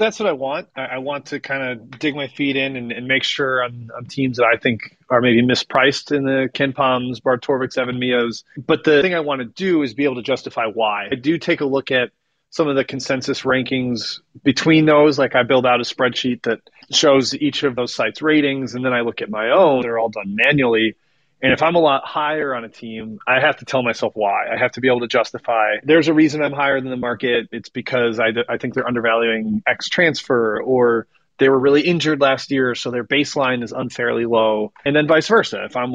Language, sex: English, male